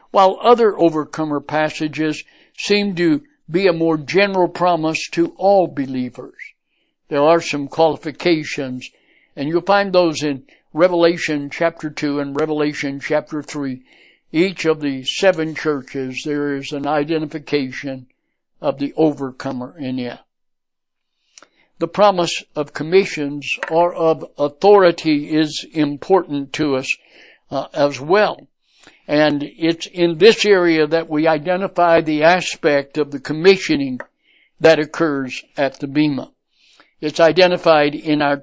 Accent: American